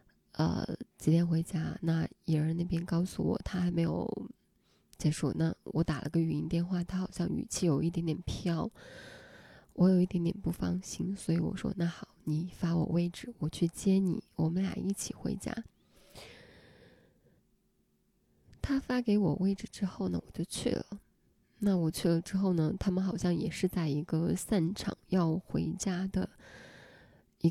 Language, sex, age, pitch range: Chinese, female, 20-39, 165-195 Hz